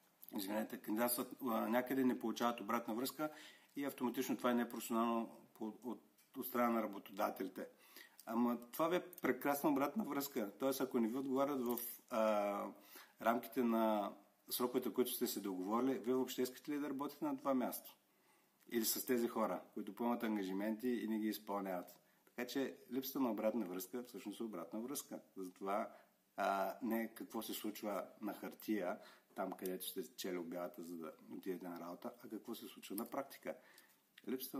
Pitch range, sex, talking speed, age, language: 105-125 Hz, male, 165 wpm, 50-69, Bulgarian